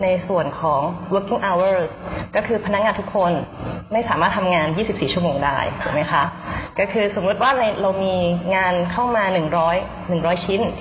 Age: 20-39